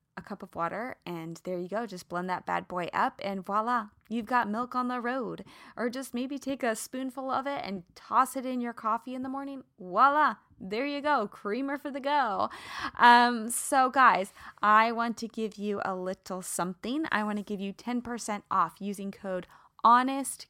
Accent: American